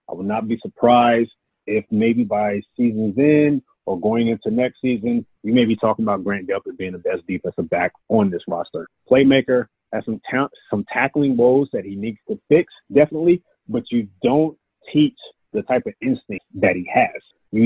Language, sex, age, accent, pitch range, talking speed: English, male, 30-49, American, 110-135 Hz, 185 wpm